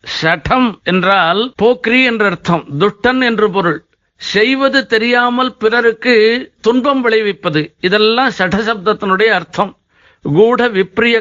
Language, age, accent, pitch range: Tamil, 50-69, native, 200-250 Hz